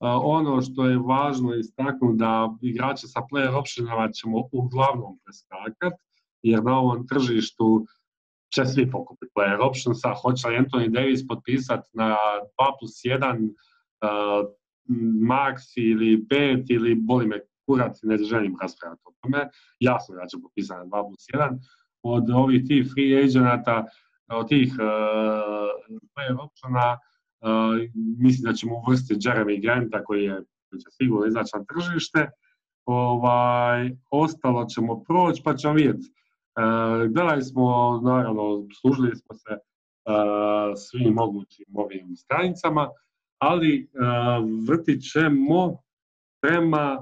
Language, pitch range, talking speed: Croatian, 115-140 Hz, 125 wpm